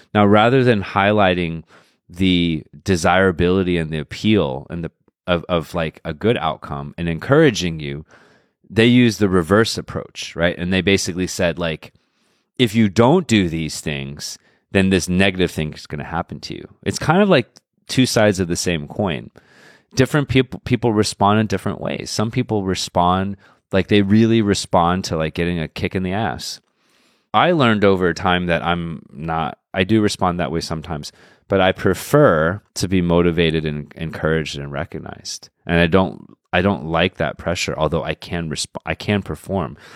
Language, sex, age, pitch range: Chinese, male, 30-49, 80-100 Hz